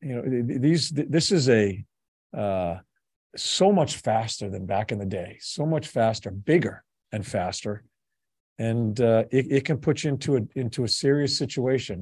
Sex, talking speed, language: male, 170 wpm, English